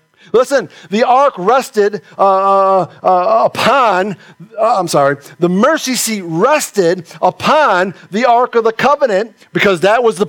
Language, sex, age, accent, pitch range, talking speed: English, male, 50-69, American, 125-190 Hz, 140 wpm